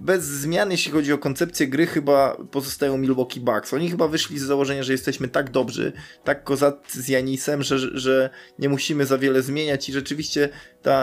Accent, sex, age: native, male, 20-39